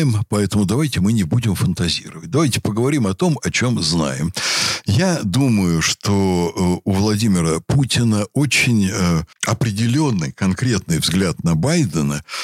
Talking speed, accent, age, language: 125 wpm, native, 60-79, Russian